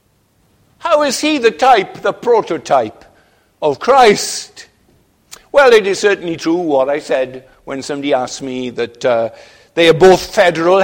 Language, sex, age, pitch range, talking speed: English, male, 60-79, 140-190 Hz, 150 wpm